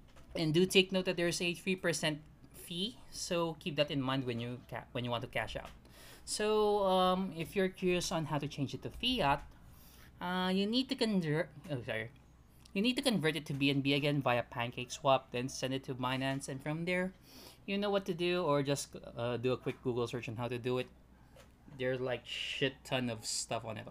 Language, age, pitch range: Filipino, 20-39, 125-175 Hz